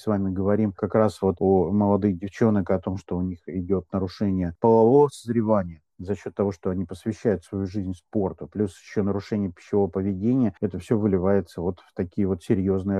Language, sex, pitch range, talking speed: Russian, male, 100-125 Hz, 185 wpm